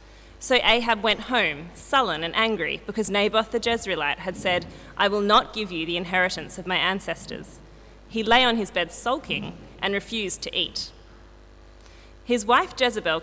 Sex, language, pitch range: female, English, 185-260 Hz